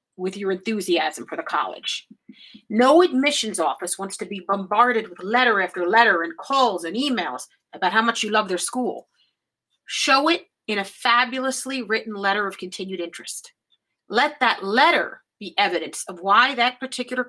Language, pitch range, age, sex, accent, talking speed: English, 205-270 Hz, 40-59, female, American, 165 wpm